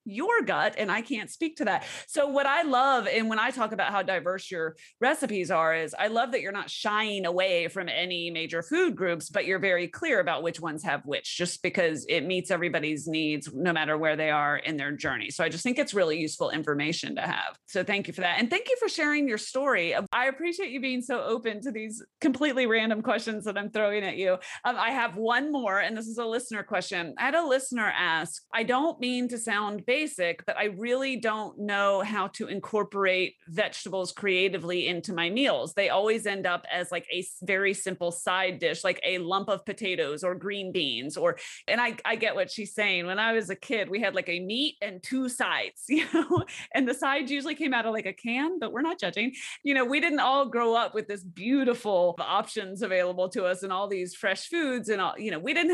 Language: English